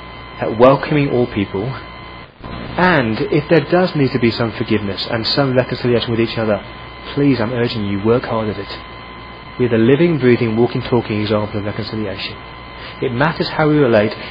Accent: British